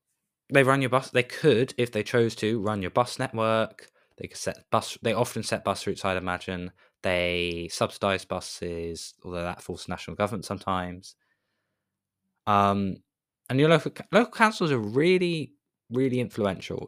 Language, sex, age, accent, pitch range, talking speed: English, male, 20-39, British, 100-145 Hz, 160 wpm